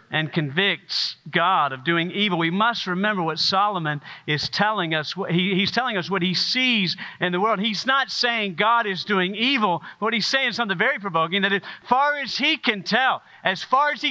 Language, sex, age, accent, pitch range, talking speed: English, male, 50-69, American, 130-180 Hz, 210 wpm